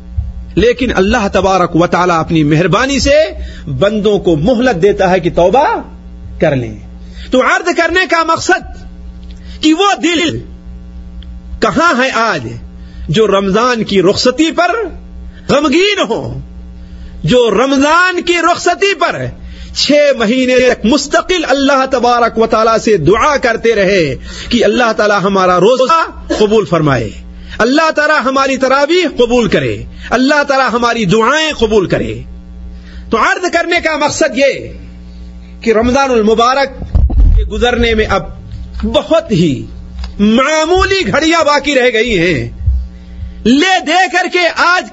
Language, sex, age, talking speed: Urdu, male, 50-69, 130 wpm